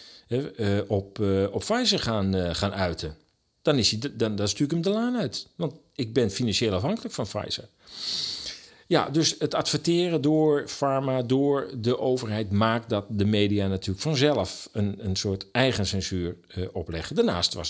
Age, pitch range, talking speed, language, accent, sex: 40-59, 95-120 Hz, 175 wpm, Dutch, Dutch, male